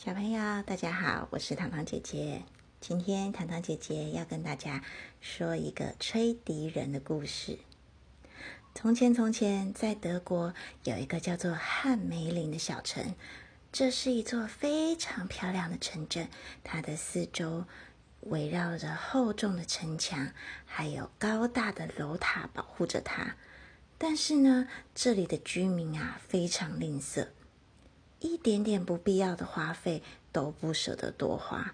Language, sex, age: Chinese, female, 30-49